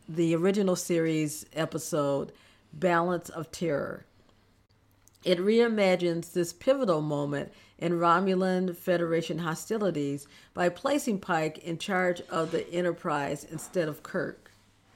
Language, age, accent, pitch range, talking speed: English, 50-69, American, 155-195 Hz, 110 wpm